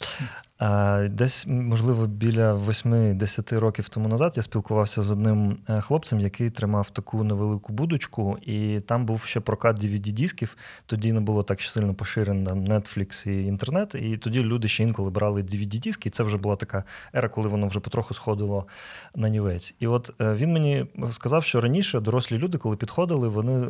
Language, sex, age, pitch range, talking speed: Ukrainian, male, 20-39, 105-125 Hz, 160 wpm